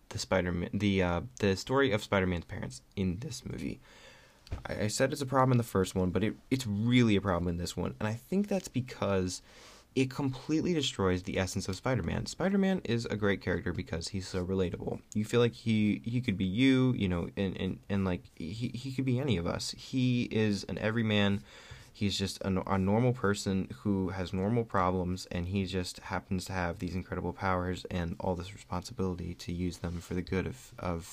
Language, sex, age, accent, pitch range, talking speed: English, male, 20-39, American, 95-130 Hz, 210 wpm